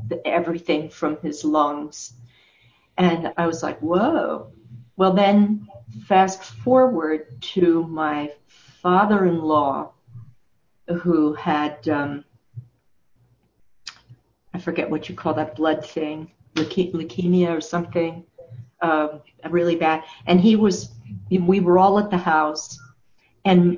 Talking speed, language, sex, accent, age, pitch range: 110 wpm, English, female, American, 50-69, 150-195 Hz